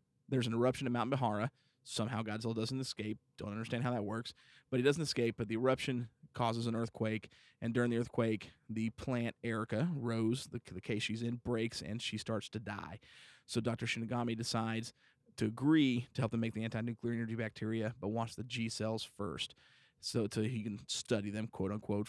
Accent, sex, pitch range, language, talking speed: American, male, 110-125 Hz, English, 200 wpm